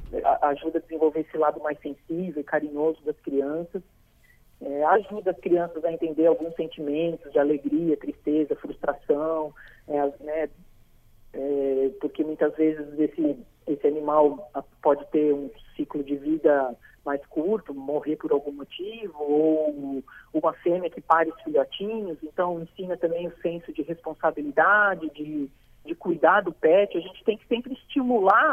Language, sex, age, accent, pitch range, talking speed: Portuguese, male, 40-59, Brazilian, 145-170 Hz, 145 wpm